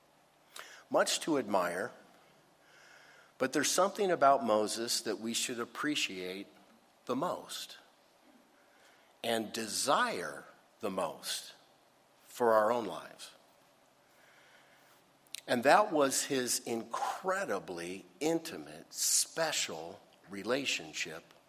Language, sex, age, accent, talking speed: English, male, 50-69, American, 85 wpm